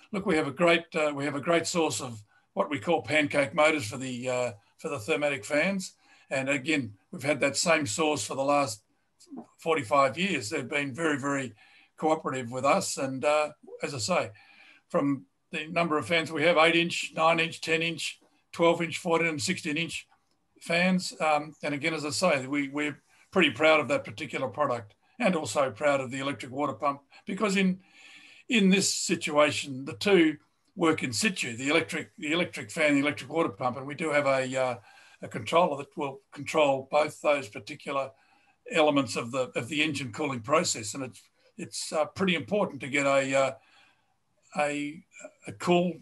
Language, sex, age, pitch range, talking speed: English, male, 50-69, 140-165 Hz, 190 wpm